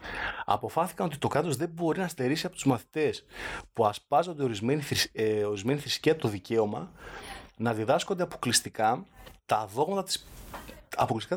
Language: Greek